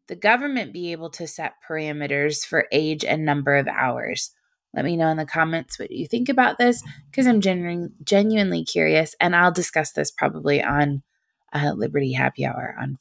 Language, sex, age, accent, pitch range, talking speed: English, female, 20-39, American, 155-210 Hz, 180 wpm